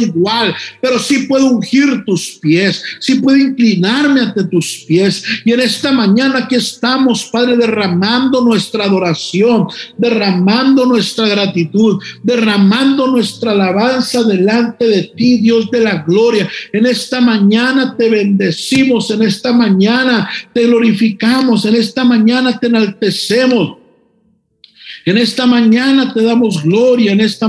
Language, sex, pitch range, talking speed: Spanish, male, 205-245 Hz, 130 wpm